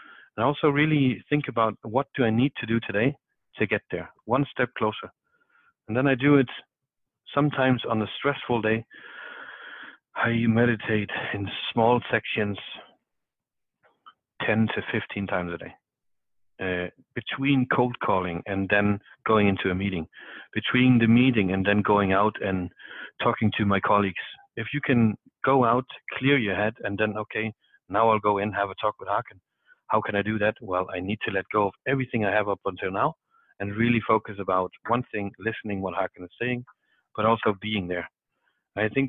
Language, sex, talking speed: English, male, 180 wpm